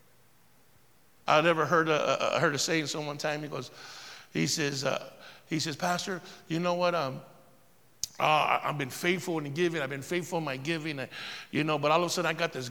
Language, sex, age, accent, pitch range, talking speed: English, male, 50-69, American, 145-175 Hz, 220 wpm